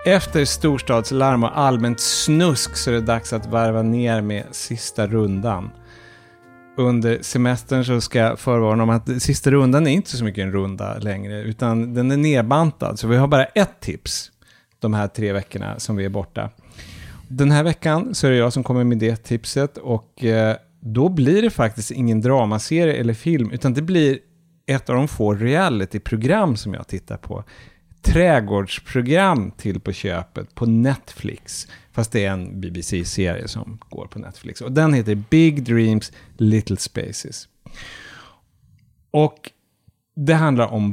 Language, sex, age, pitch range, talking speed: English, male, 30-49, 105-140 Hz, 160 wpm